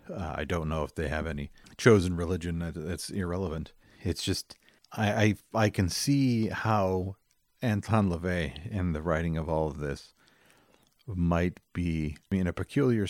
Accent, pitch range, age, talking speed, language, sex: American, 80-105 Hz, 50-69, 155 wpm, English, male